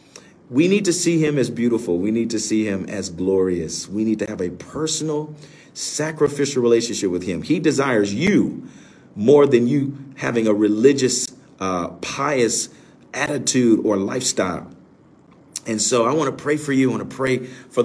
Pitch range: 115-155 Hz